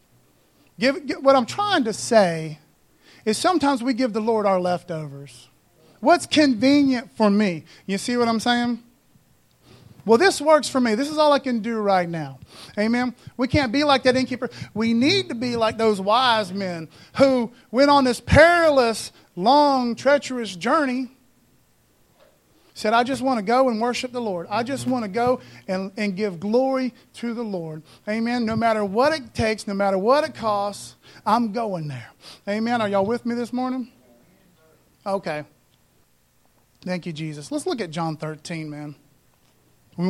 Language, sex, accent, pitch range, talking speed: English, male, American, 185-255 Hz, 170 wpm